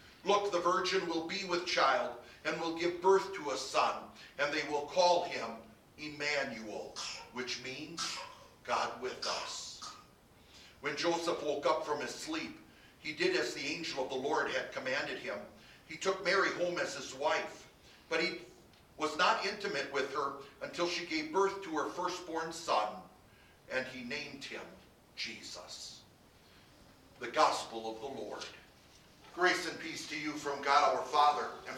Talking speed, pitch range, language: 160 wpm, 140-175 Hz, English